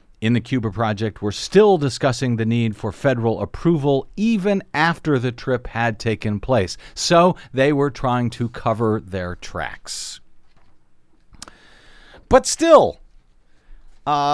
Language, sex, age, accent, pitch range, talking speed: English, male, 50-69, American, 120-165 Hz, 125 wpm